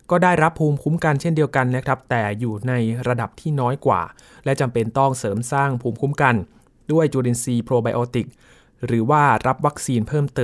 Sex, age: male, 20-39